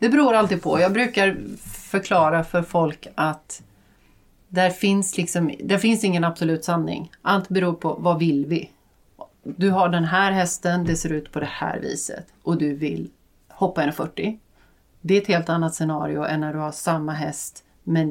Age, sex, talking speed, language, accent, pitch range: 30-49, female, 180 wpm, Swedish, native, 150-190 Hz